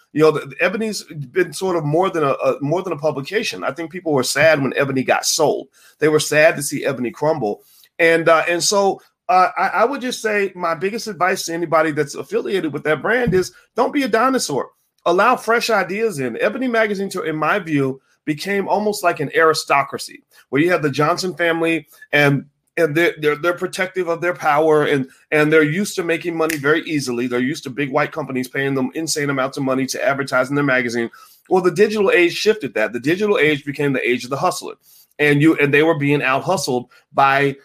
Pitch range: 135-175 Hz